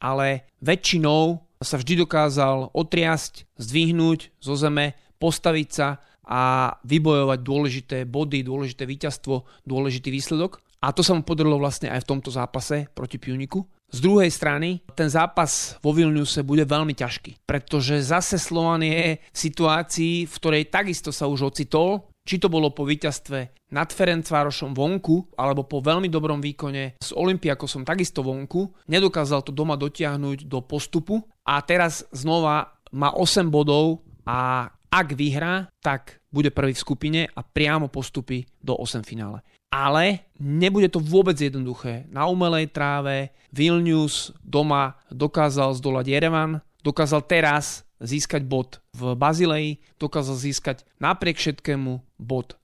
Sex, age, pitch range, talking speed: male, 30-49, 135-160 Hz, 135 wpm